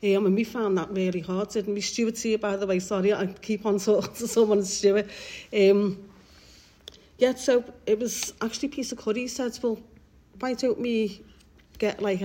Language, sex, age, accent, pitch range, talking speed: English, female, 40-59, British, 180-220 Hz, 195 wpm